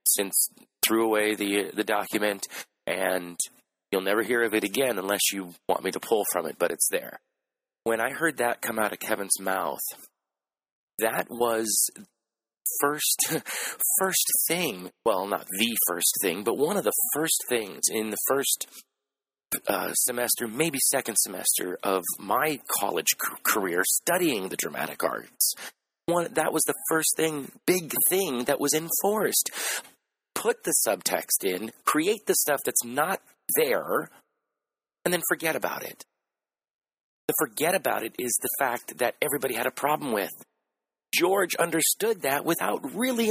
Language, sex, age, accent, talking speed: English, male, 30-49, American, 150 wpm